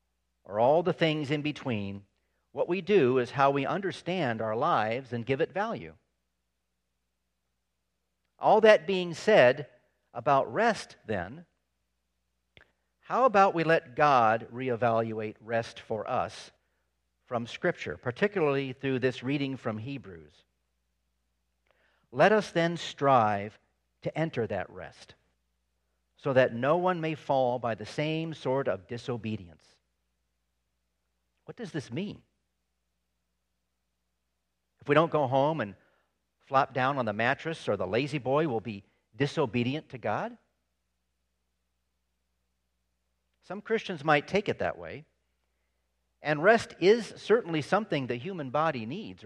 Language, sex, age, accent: English, male, 50-69, American